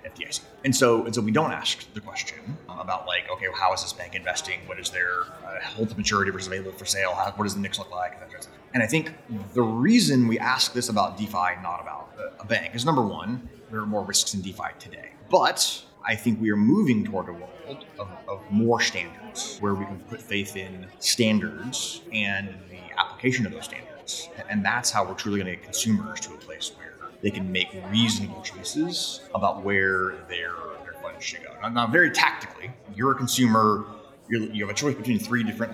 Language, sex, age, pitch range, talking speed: English, male, 30-49, 95-115 Hz, 210 wpm